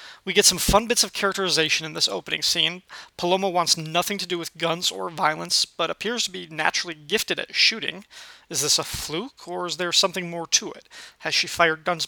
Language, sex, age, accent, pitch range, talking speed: English, male, 30-49, American, 160-190 Hz, 215 wpm